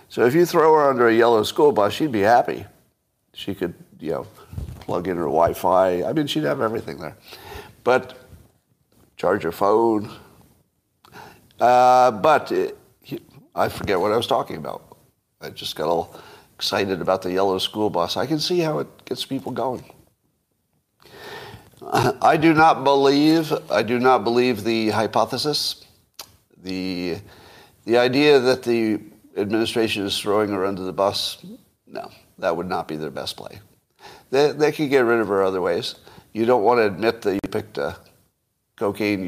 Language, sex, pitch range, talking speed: English, male, 100-135 Hz, 165 wpm